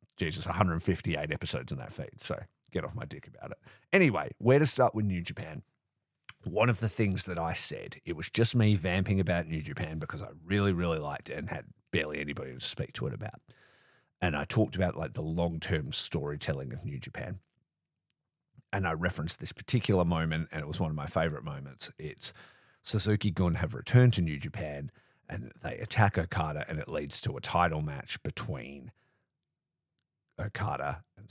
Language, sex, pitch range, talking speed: English, male, 80-110 Hz, 185 wpm